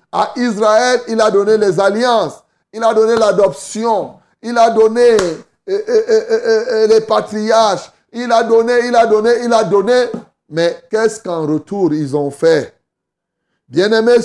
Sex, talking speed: male, 145 wpm